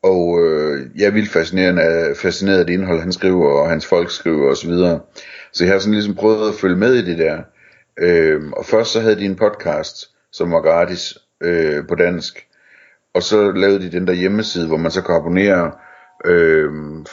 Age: 60-79